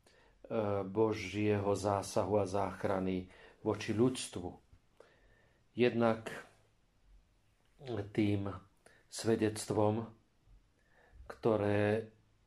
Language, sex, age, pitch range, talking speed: Slovak, male, 40-59, 100-115 Hz, 50 wpm